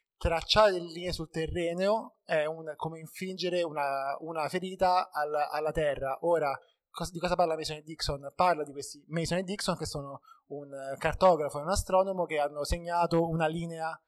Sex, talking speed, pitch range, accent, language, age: male, 175 wpm, 155-195 Hz, native, Italian, 20-39